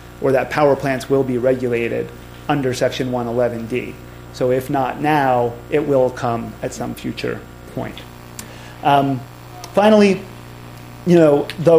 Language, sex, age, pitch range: English, male, 30-49, 115-145 Hz